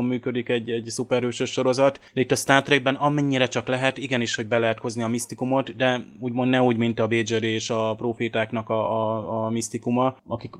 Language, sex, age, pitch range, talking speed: Hungarian, male, 20-39, 115-125 Hz, 195 wpm